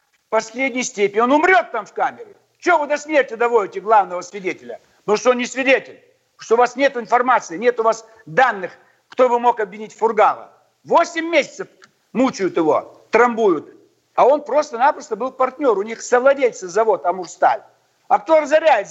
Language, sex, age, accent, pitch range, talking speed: Russian, male, 60-79, native, 220-300 Hz, 160 wpm